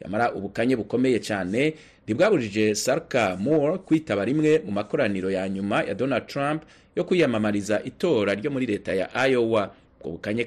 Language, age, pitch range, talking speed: Swahili, 30-49, 105-155 Hz, 145 wpm